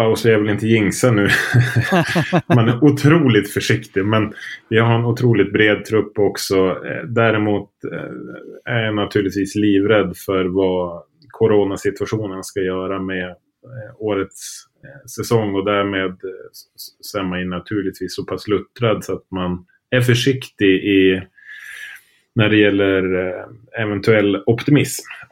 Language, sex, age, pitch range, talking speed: Swedish, male, 30-49, 95-115 Hz, 125 wpm